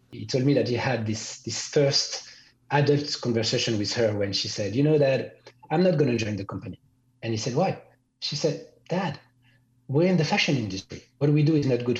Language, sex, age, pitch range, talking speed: English, male, 30-49, 110-145 Hz, 225 wpm